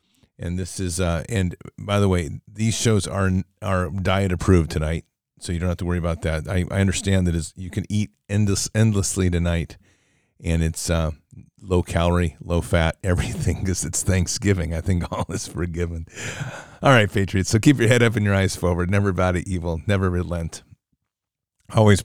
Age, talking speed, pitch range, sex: 50-69, 185 wpm, 85-100 Hz, male